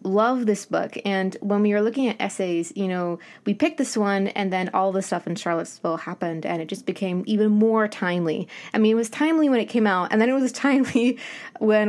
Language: English